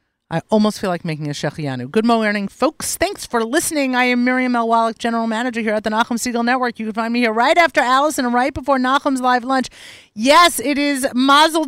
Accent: American